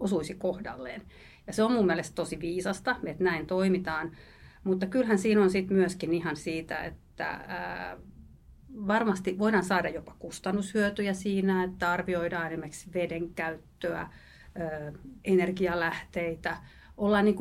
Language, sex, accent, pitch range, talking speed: English, female, Finnish, 170-205 Hz, 110 wpm